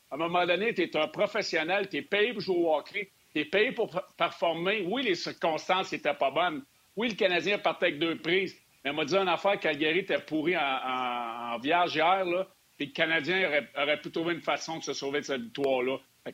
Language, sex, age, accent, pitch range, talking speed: French, male, 60-79, Canadian, 150-185 Hz, 225 wpm